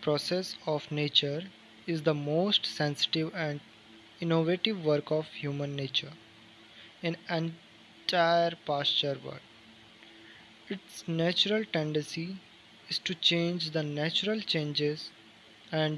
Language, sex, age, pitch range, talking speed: English, male, 20-39, 140-170 Hz, 100 wpm